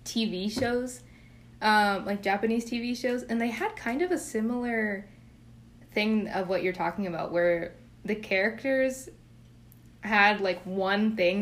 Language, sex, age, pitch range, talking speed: English, female, 20-39, 175-215 Hz, 140 wpm